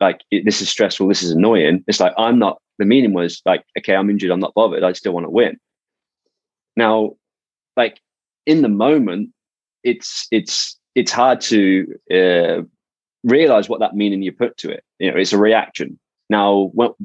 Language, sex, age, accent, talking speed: English, male, 20-39, British, 185 wpm